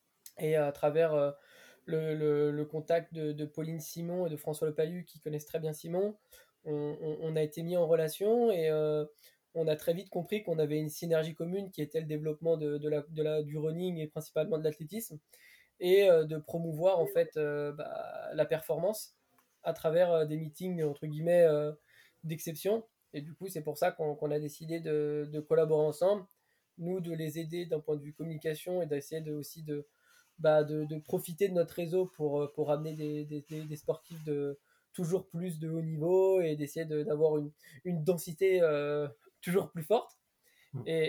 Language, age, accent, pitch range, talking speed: French, 20-39, French, 150-170 Hz, 195 wpm